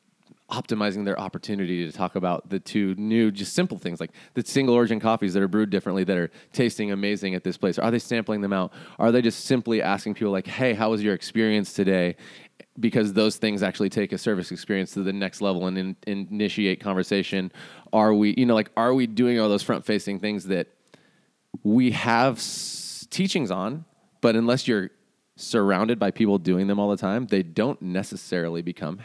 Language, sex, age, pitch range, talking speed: English, male, 30-49, 95-110 Hz, 190 wpm